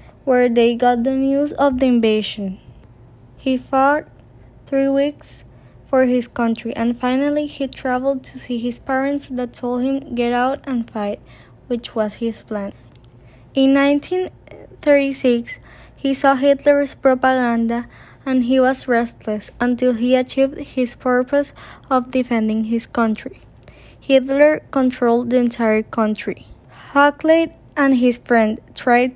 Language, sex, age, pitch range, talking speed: English, female, 20-39, 230-270 Hz, 130 wpm